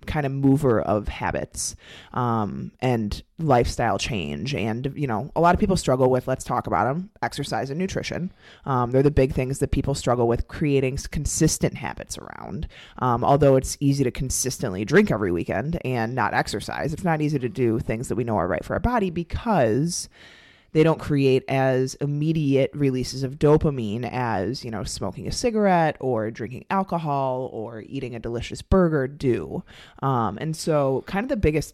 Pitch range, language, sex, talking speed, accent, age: 125-155 Hz, English, female, 180 wpm, American, 20-39